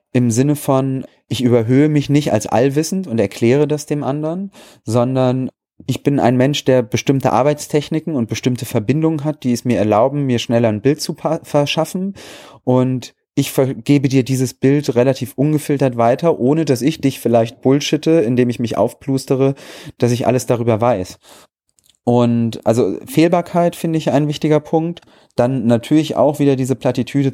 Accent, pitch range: German, 120-145 Hz